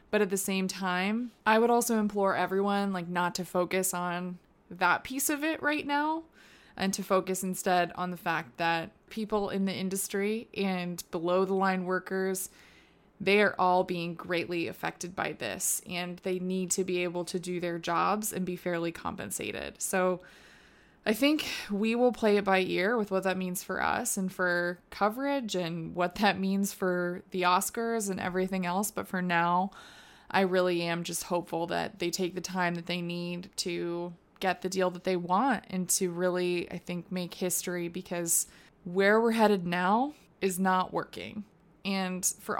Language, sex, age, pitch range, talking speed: English, female, 20-39, 180-205 Hz, 180 wpm